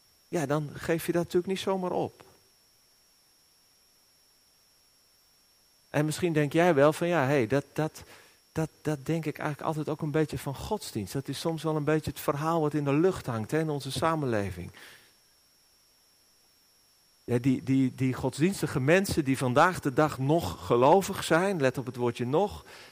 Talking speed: 155 wpm